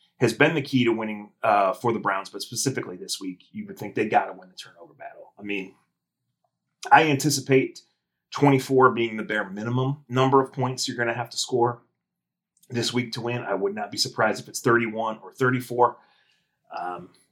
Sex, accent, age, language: male, American, 30-49, English